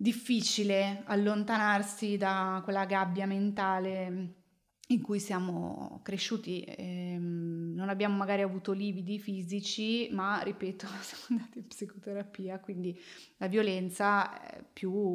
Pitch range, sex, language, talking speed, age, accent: 180-210 Hz, female, Italian, 110 wpm, 20-39, native